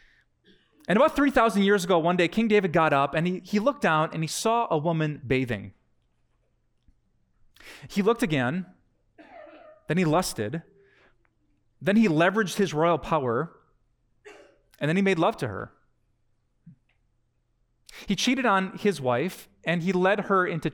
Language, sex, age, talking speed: English, male, 30-49, 150 wpm